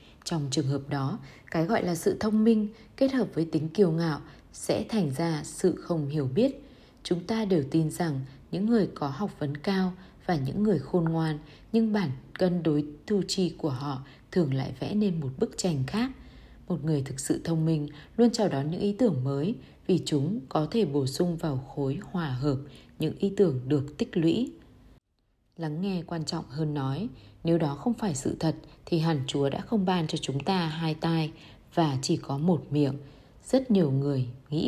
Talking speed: 200 wpm